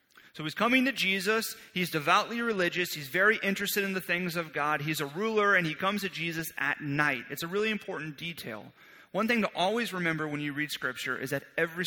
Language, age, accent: English, 30-49, American